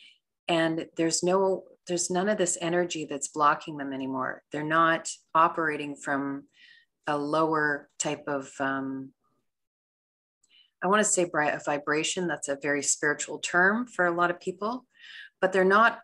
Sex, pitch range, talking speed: female, 150-185 Hz, 155 wpm